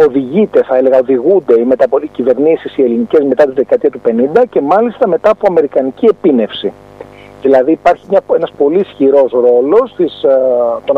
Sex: male